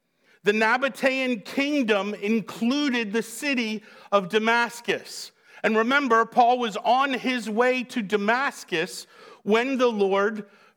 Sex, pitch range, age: male, 200-240 Hz, 50-69